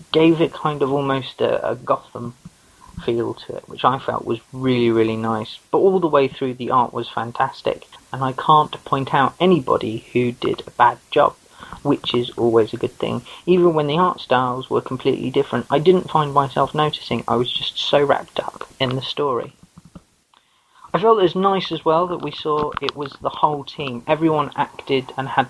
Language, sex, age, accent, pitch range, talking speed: English, male, 30-49, British, 120-145 Hz, 200 wpm